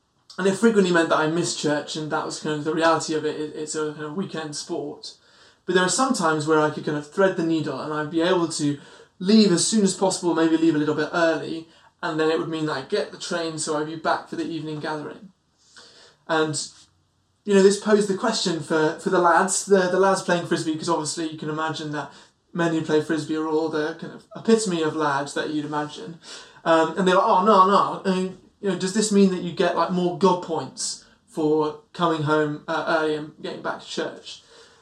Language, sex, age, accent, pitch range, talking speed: English, male, 20-39, British, 155-185 Hz, 235 wpm